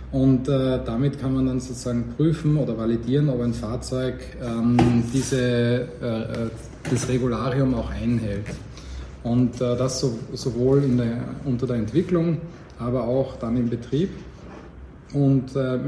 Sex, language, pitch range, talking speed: male, German, 120-135 Hz, 140 wpm